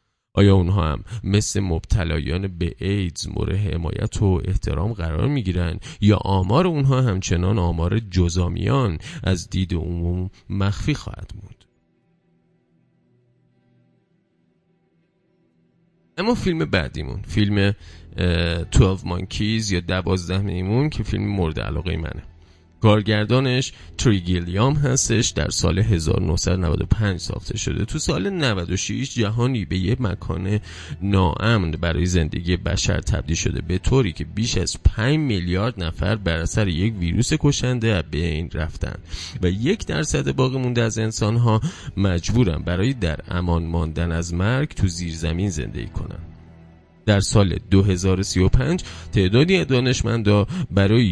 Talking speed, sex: 120 wpm, male